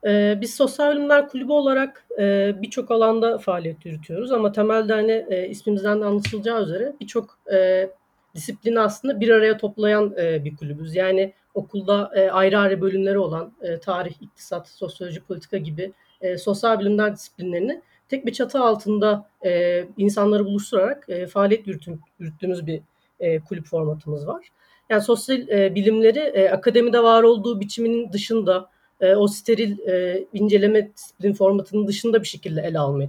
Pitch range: 185-235 Hz